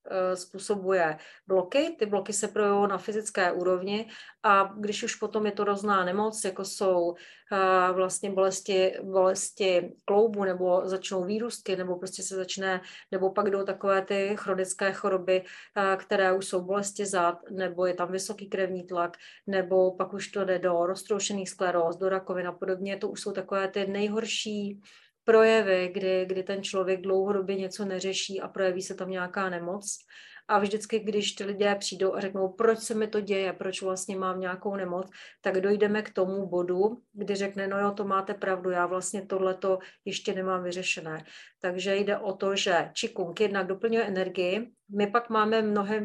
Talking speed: 170 wpm